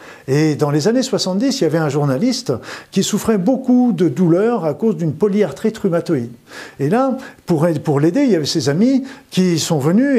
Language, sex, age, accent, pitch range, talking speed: French, male, 50-69, French, 140-200 Hz, 195 wpm